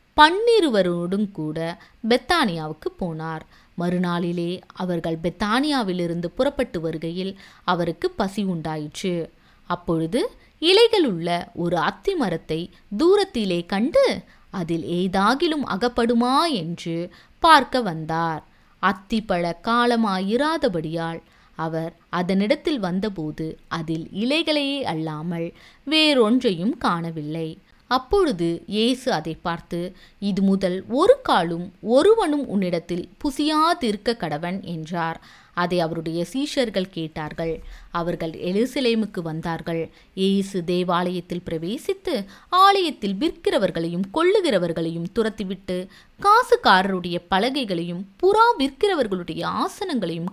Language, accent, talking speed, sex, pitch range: Tamil, native, 85 wpm, female, 170-255 Hz